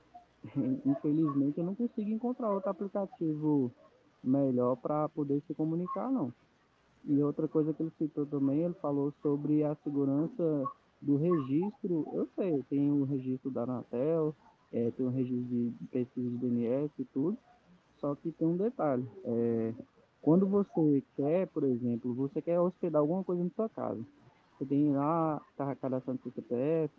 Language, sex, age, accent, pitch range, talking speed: Portuguese, male, 20-39, Brazilian, 130-175 Hz, 155 wpm